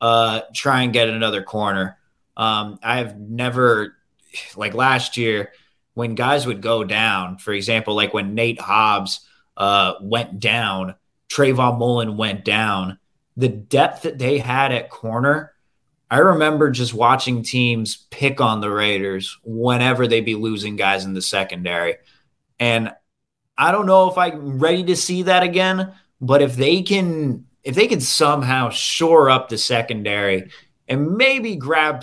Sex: male